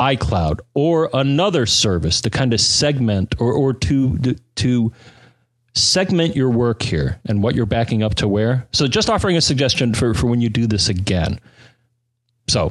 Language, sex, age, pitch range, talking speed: English, male, 40-59, 105-140 Hz, 170 wpm